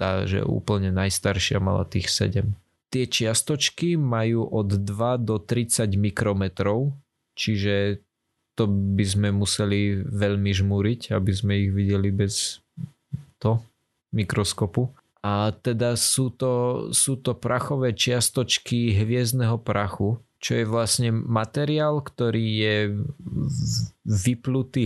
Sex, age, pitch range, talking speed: male, 20-39, 100-120 Hz, 110 wpm